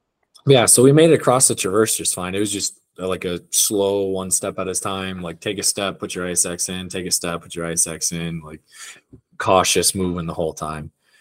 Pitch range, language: 85-105 Hz, English